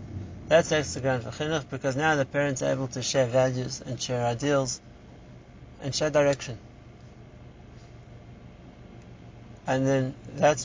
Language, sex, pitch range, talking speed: English, male, 115-140 Hz, 125 wpm